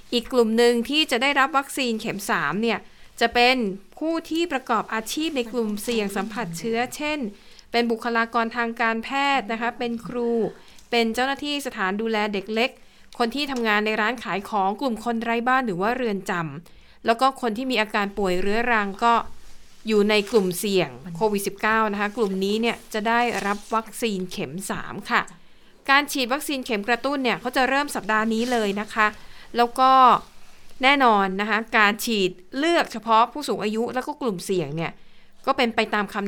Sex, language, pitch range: female, Thai, 200-245 Hz